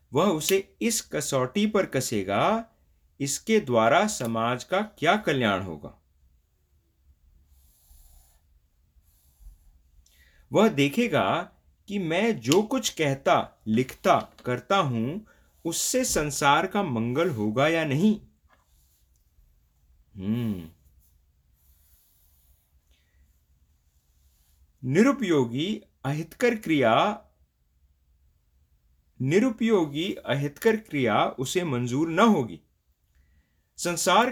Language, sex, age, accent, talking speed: English, male, 50-69, Indian, 70 wpm